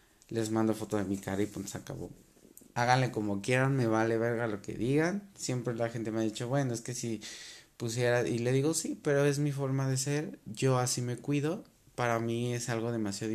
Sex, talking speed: male, 220 wpm